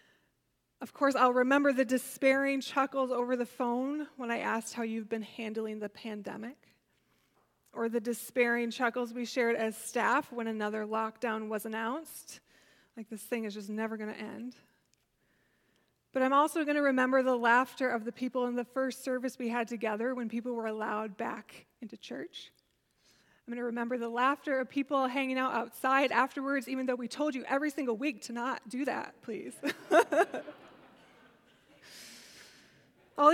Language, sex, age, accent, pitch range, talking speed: English, female, 20-39, American, 230-270 Hz, 165 wpm